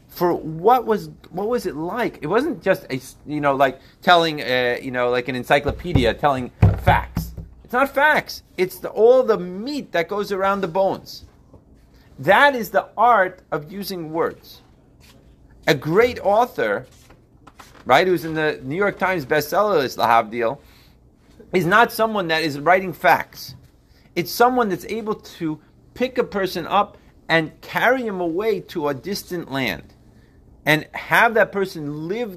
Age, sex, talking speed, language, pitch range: 40-59, male, 160 wpm, English, 145-210 Hz